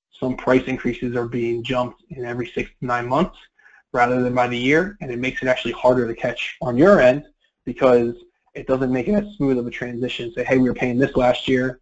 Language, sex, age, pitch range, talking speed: English, male, 20-39, 125-135 Hz, 235 wpm